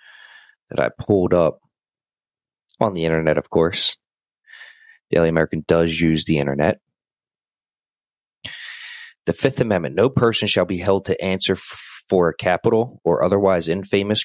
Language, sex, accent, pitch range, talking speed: English, male, American, 85-115 Hz, 135 wpm